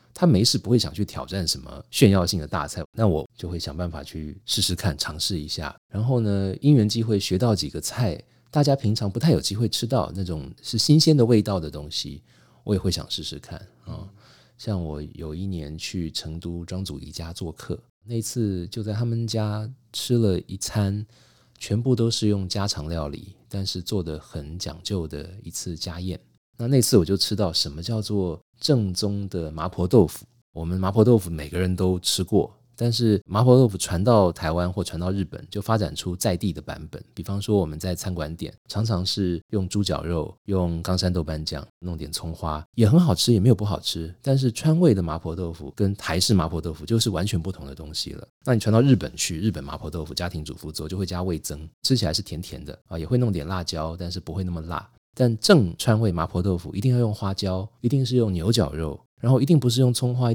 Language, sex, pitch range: Chinese, male, 85-115 Hz